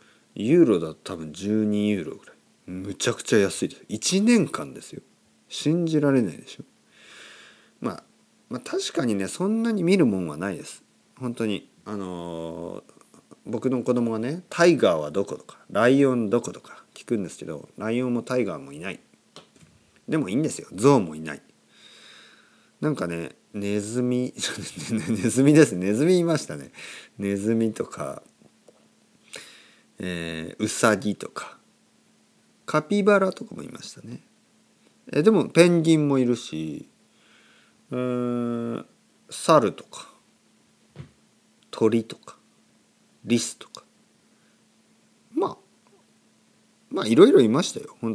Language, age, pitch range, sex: Japanese, 40-59, 100-150 Hz, male